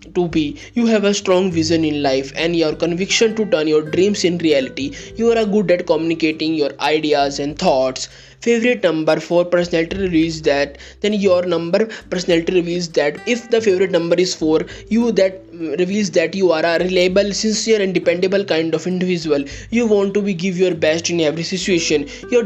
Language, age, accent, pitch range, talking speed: English, 20-39, Indian, 160-200 Hz, 185 wpm